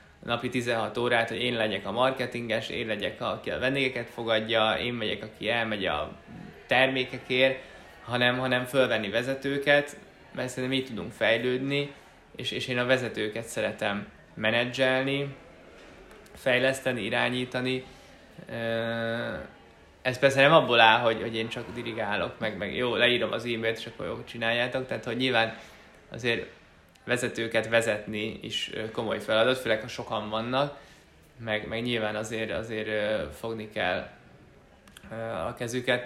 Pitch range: 115-130 Hz